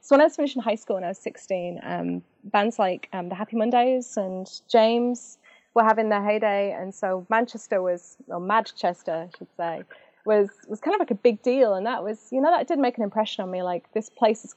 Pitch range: 190-245 Hz